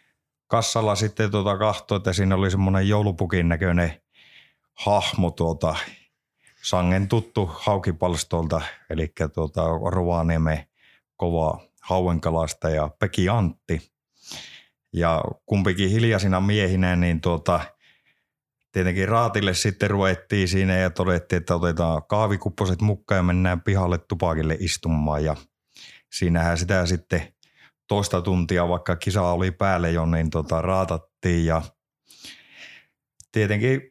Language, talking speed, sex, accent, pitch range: Finnish, 110 wpm, male, native, 85-105 Hz